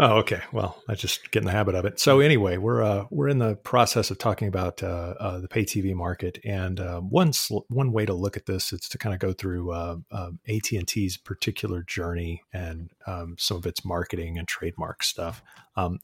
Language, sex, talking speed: English, male, 230 wpm